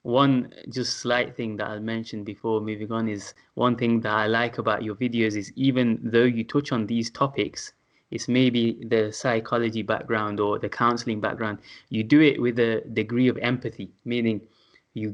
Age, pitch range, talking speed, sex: 20-39, 110-130 Hz, 180 wpm, male